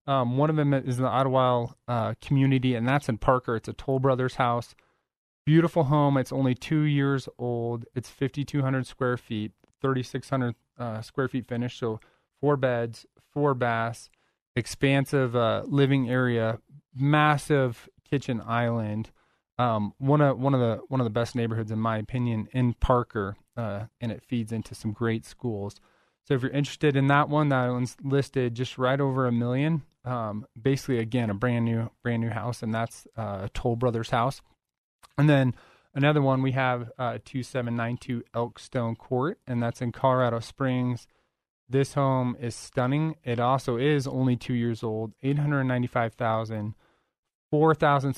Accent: American